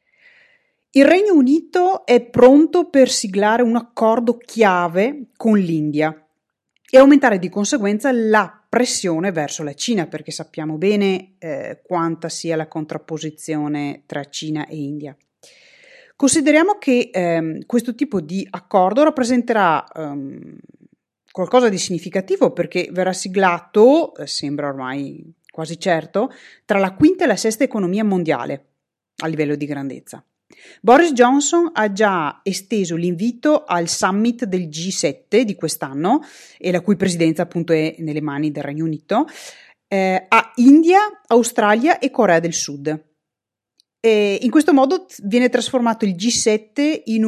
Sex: female